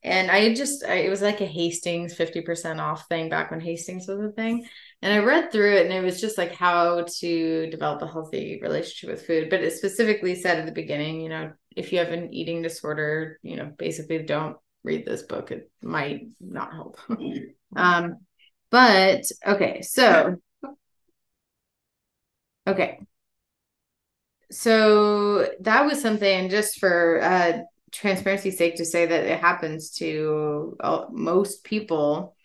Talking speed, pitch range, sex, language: 155 wpm, 165-195 Hz, female, English